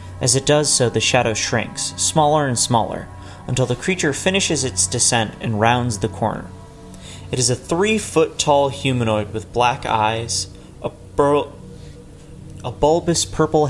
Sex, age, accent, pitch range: male, 30-49, American, 105-150 Hz